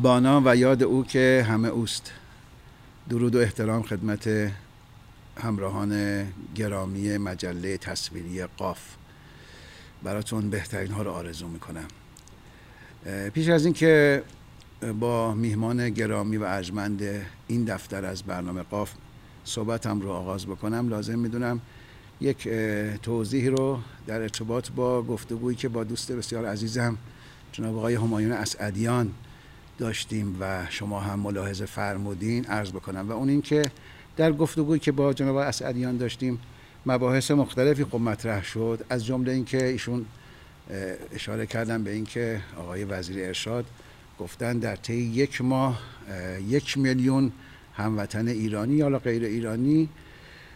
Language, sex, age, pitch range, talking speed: Persian, male, 60-79, 100-125 Hz, 125 wpm